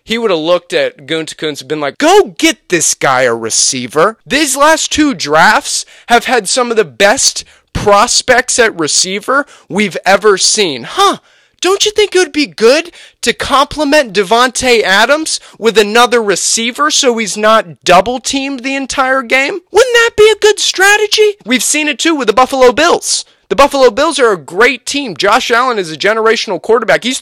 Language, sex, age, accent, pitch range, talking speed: English, male, 20-39, American, 170-265 Hz, 180 wpm